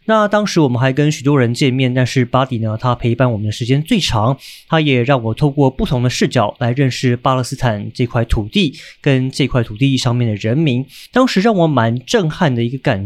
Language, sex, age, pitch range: Chinese, male, 30-49, 120-150 Hz